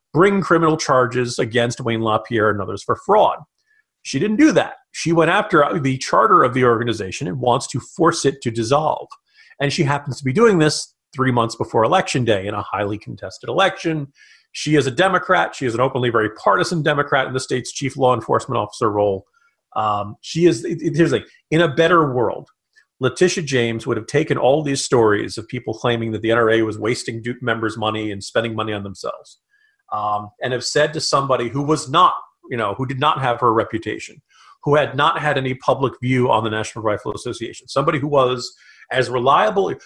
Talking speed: 195 wpm